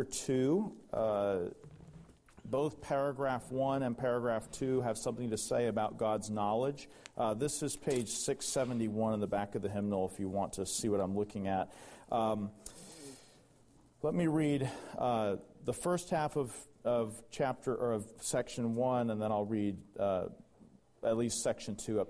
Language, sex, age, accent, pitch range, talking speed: English, male, 40-59, American, 110-140 Hz, 160 wpm